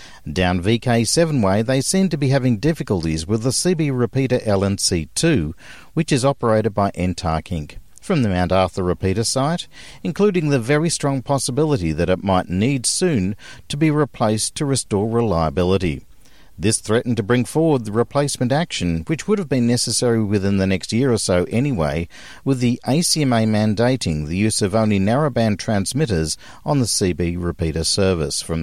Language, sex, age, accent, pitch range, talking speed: English, male, 50-69, Australian, 95-135 Hz, 165 wpm